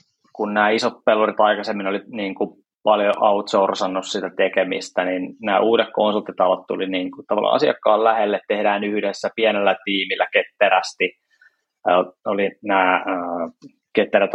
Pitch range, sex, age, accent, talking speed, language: 100-110 Hz, male, 20-39, native, 120 wpm, Finnish